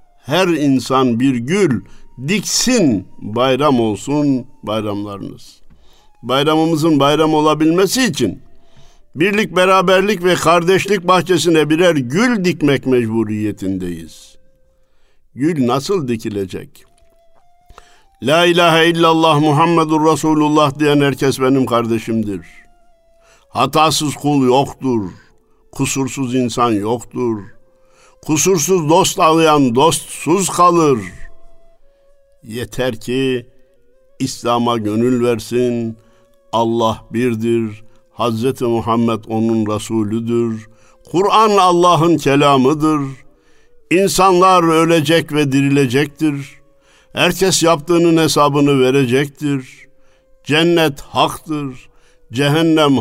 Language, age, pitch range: Turkish, 60-79, 125-165 Hz